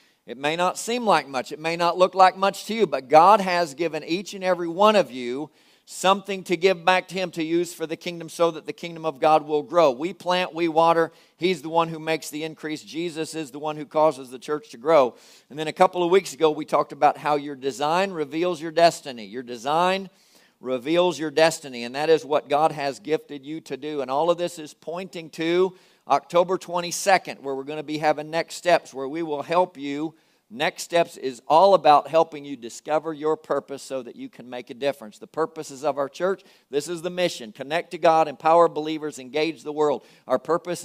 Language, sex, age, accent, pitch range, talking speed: English, male, 50-69, American, 150-180 Hz, 225 wpm